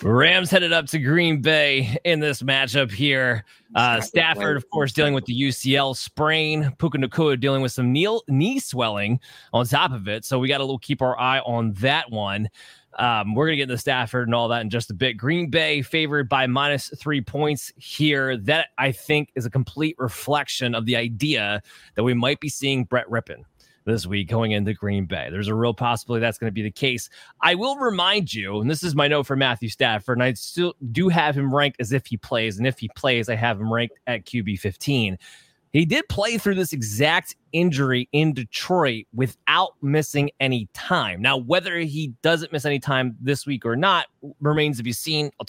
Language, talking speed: English, 210 wpm